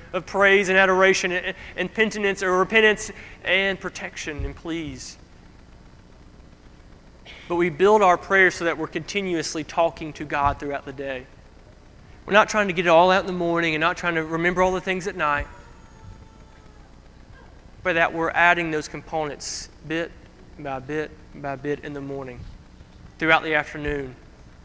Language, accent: English, American